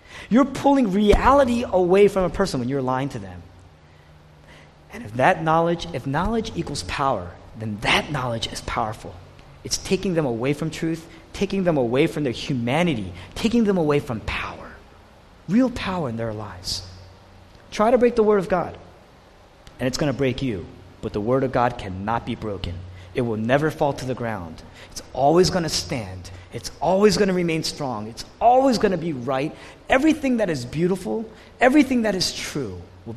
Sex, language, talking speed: male, English, 185 wpm